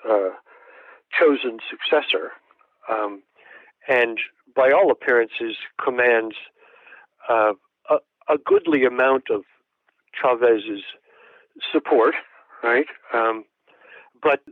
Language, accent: English, American